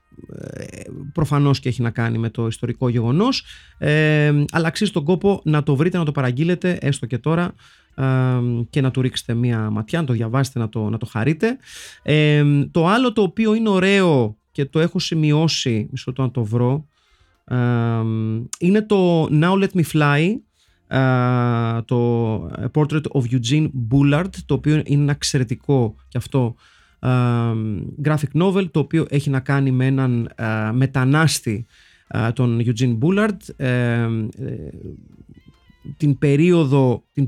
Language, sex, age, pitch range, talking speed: Greek, male, 30-49, 120-150 Hz, 145 wpm